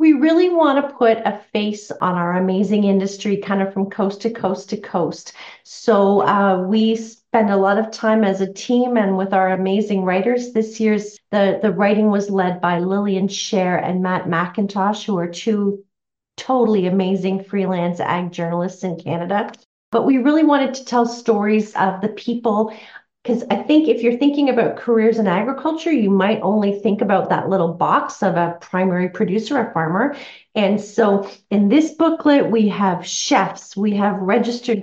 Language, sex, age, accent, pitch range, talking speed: English, female, 40-59, American, 190-225 Hz, 175 wpm